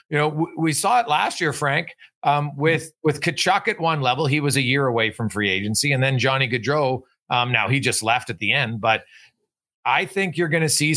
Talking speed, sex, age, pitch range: 230 wpm, male, 40-59, 120-150 Hz